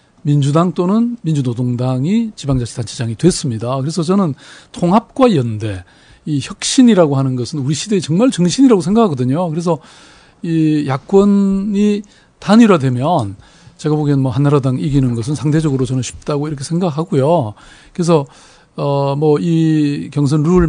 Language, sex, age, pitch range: Korean, male, 40-59, 130-175 Hz